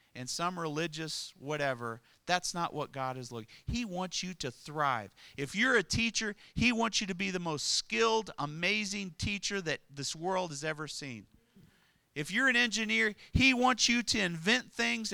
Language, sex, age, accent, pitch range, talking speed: English, male, 40-59, American, 145-220 Hz, 180 wpm